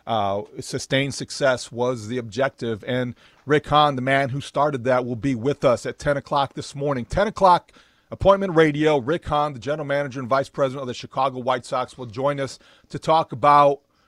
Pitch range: 135-165 Hz